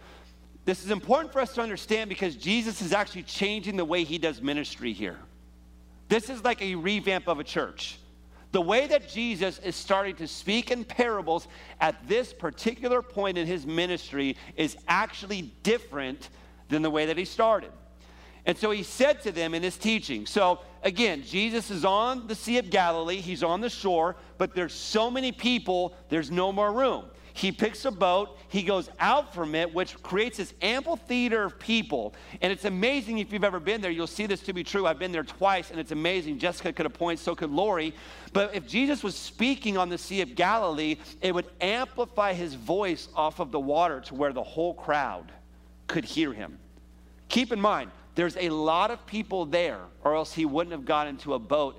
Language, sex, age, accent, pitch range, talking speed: English, male, 40-59, American, 155-210 Hz, 200 wpm